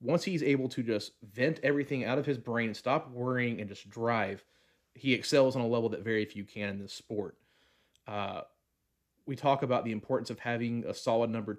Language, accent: English, American